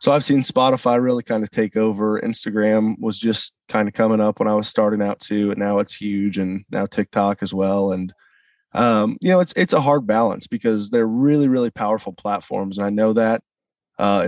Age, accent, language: 20-39, American, English